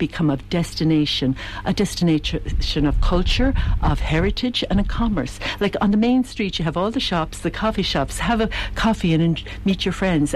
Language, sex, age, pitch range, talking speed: English, female, 60-79, 145-205 Hz, 190 wpm